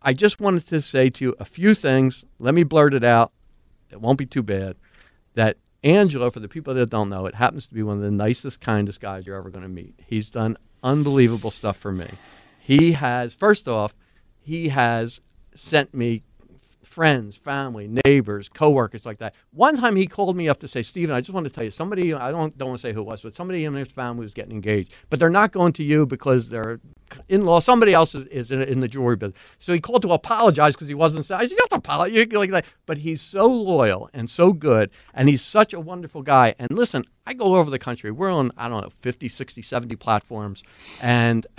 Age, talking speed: 50-69, 230 wpm